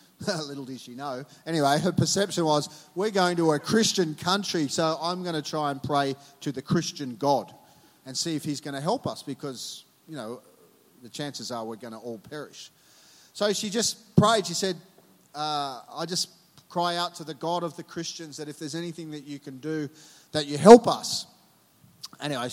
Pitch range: 140-170 Hz